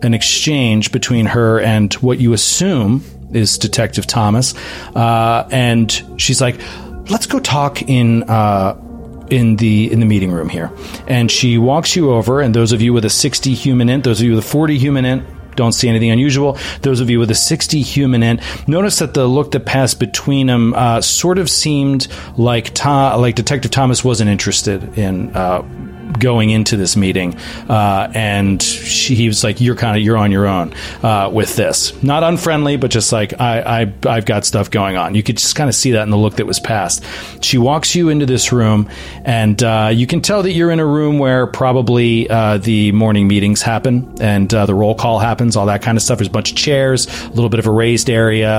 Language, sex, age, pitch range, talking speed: English, male, 40-59, 105-130 Hz, 210 wpm